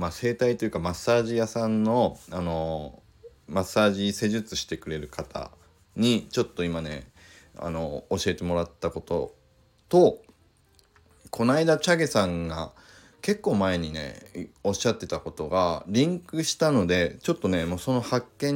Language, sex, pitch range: Japanese, male, 85-140 Hz